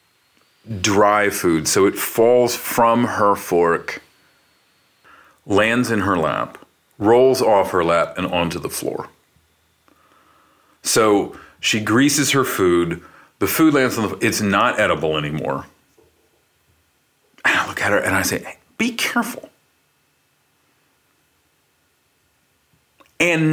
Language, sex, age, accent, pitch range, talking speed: English, male, 40-59, American, 100-145 Hz, 120 wpm